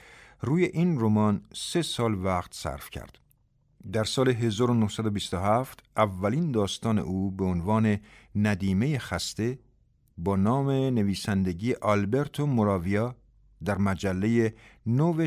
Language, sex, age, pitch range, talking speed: Persian, male, 50-69, 100-125 Hz, 105 wpm